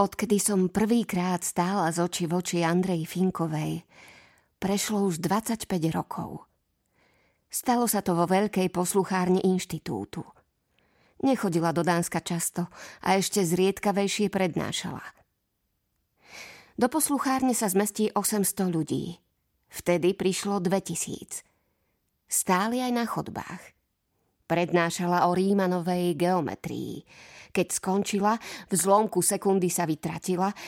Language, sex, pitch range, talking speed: Slovak, female, 170-200 Hz, 105 wpm